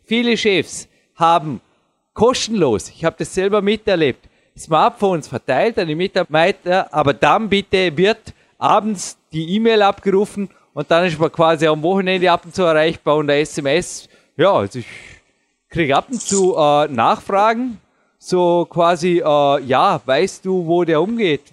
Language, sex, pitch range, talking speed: German, male, 145-195 Hz, 150 wpm